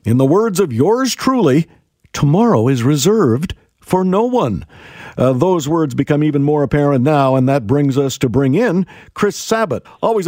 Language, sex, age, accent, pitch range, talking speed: English, male, 50-69, American, 125-155 Hz, 175 wpm